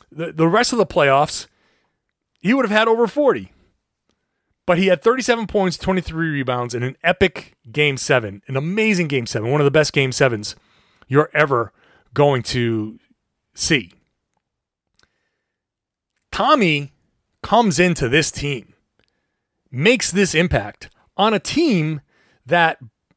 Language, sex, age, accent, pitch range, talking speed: English, male, 30-49, American, 140-195 Hz, 130 wpm